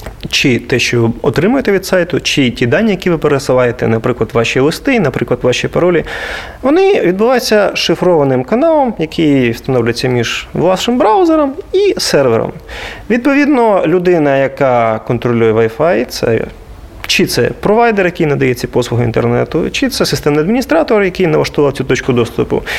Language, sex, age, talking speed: Russian, male, 30-49, 135 wpm